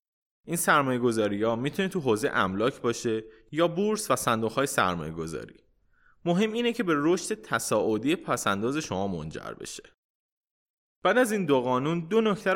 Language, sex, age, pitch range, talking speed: Persian, male, 20-39, 115-175 Hz, 155 wpm